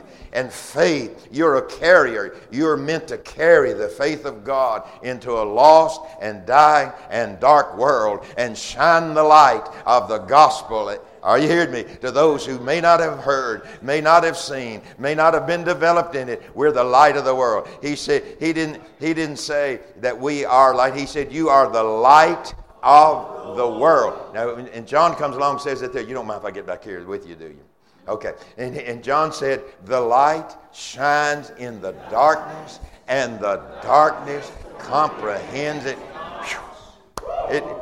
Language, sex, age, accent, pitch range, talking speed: English, male, 60-79, American, 130-155 Hz, 180 wpm